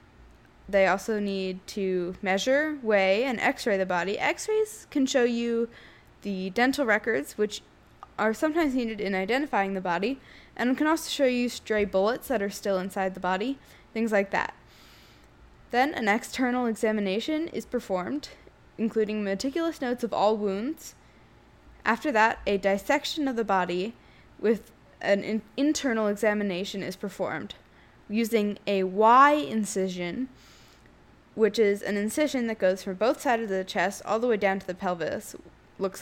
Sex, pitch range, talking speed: female, 195-245 Hz, 150 wpm